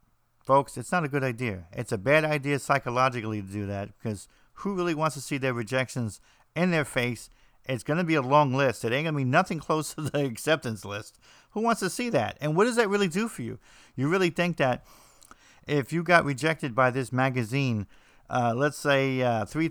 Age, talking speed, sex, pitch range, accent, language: 50-69, 220 wpm, male, 125-160 Hz, American, English